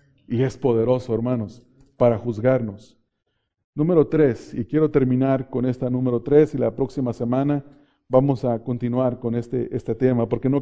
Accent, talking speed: Mexican, 160 wpm